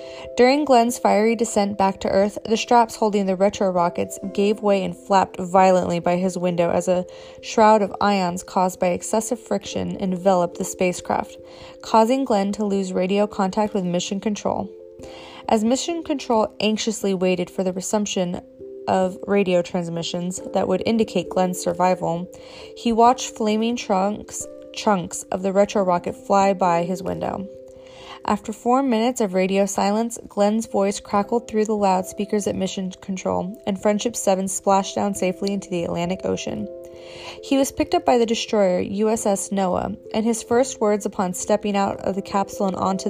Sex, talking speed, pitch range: female, 165 wpm, 180-220 Hz